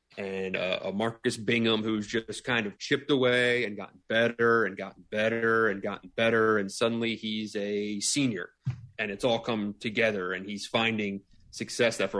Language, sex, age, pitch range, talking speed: English, male, 30-49, 100-125 Hz, 175 wpm